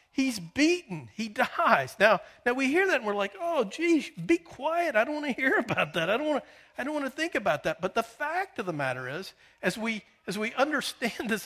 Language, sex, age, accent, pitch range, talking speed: English, male, 50-69, American, 150-225 Hz, 225 wpm